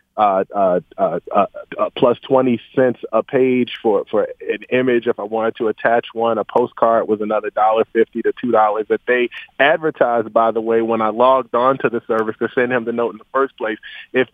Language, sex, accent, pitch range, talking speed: English, male, American, 115-145 Hz, 210 wpm